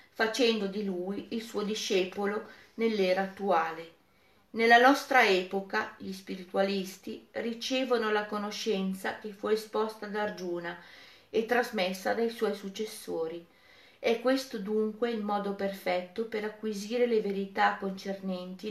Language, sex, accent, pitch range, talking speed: Italian, female, native, 190-220 Hz, 120 wpm